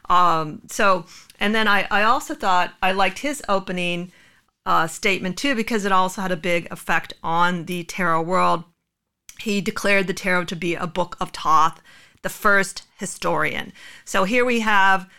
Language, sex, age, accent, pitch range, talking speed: English, female, 40-59, American, 175-205 Hz, 170 wpm